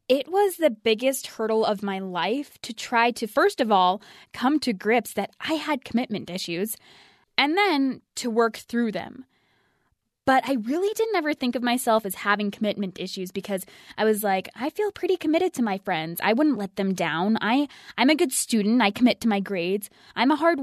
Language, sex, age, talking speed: English, female, 20-39, 200 wpm